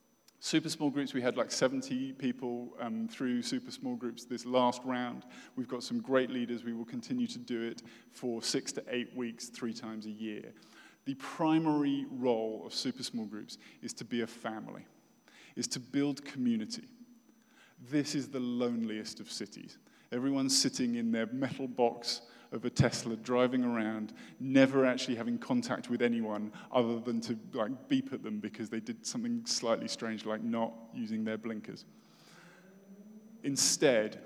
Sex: male